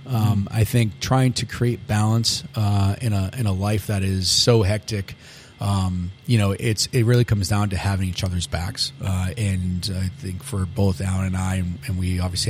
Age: 30-49